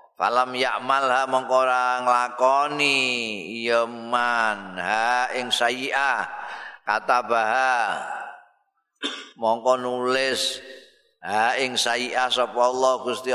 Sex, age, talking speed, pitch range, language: male, 50-69, 85 wpm, 120-135 Hz, Indonesian